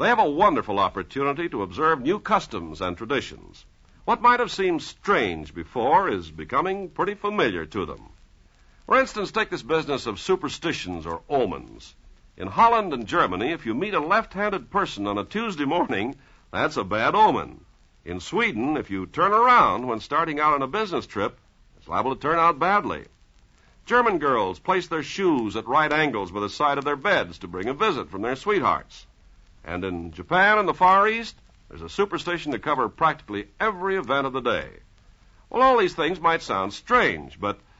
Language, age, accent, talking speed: English, 60-79, American, 185 wpm